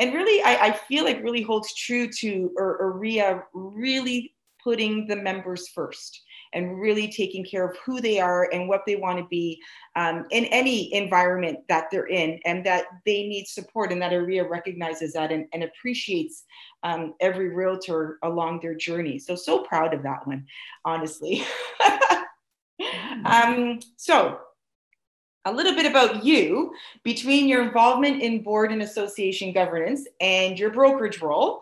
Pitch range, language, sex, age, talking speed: 180-235 Hz, English, female, 30-49, 155 wpm